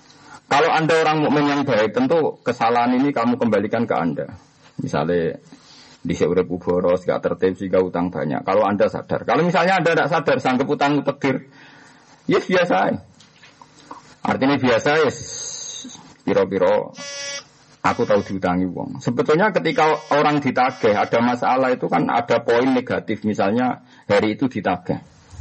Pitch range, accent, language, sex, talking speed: 120-180 Hz, native, Indonesian, male, 135 wpm